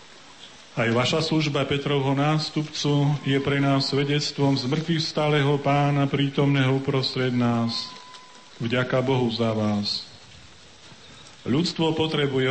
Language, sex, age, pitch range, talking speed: Slovak, male, 40-59, 130-150 Hz, 100 wpm